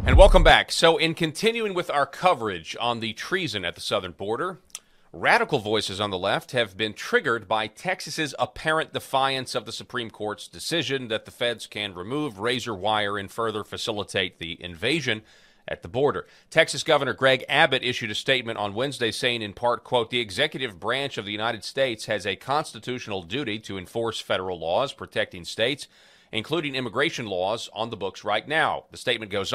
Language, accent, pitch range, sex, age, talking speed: English, American, 105-140 Hz, male, 40-59, 180 wpm